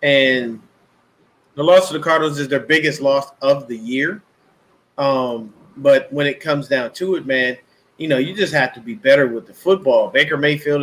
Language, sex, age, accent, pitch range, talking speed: English, male, 30-49, American, 135-180 Hz, 195 wpm